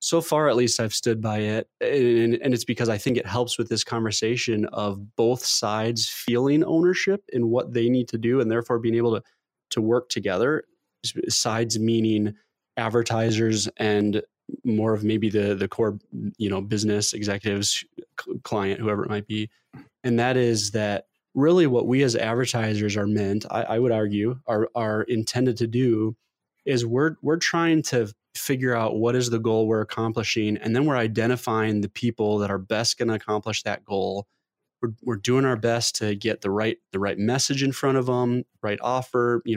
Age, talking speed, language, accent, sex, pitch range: 20-39, 185 wpm, English, American, male, 110-125 Hz